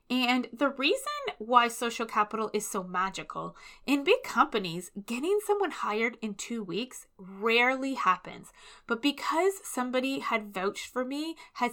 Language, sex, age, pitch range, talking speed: English, female, 20-39, 205-280 Hz, 145 wpm